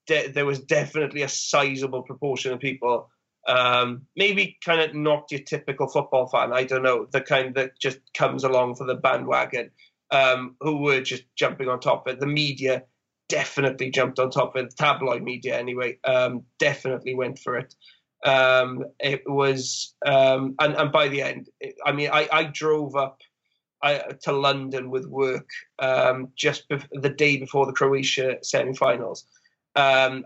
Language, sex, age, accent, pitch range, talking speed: English, male, 30-49, British, 135-150 Hz, 175 wpm